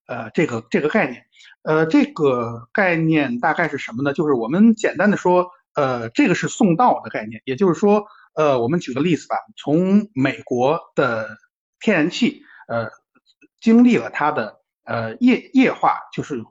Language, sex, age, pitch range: Chinese, male, 50-69, 140-230 Hz